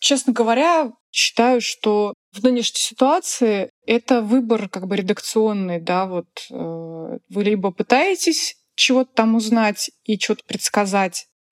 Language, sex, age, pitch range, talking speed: Russian, female, 20-39, 200-255 Hz, 130 wpm